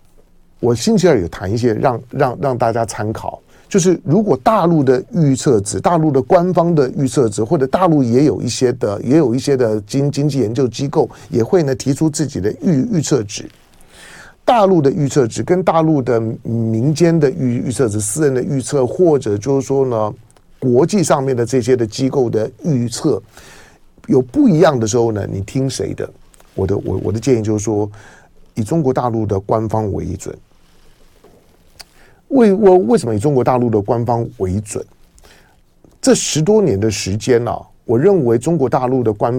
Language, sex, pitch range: Chinese, male, 110-155 Hz